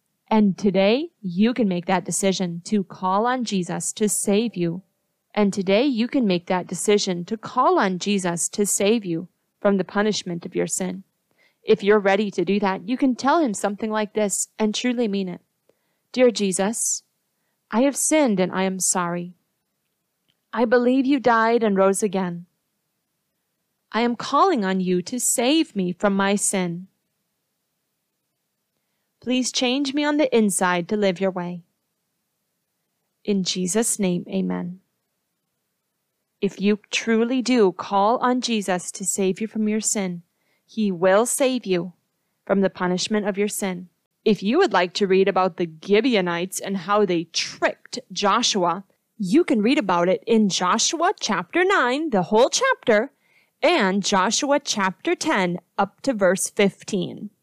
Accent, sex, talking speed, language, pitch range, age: American, female, 155 wpm, English, 185-230 Hz, 30-49